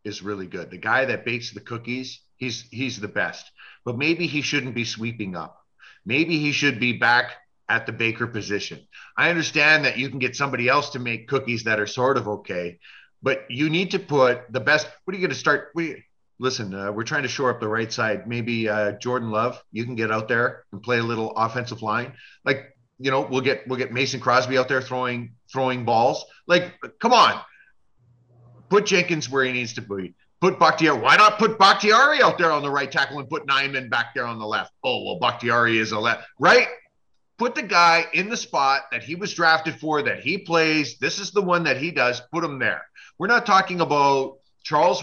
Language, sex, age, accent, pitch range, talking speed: English, male, 40-59, American, 120-155 Hz, 220 wpm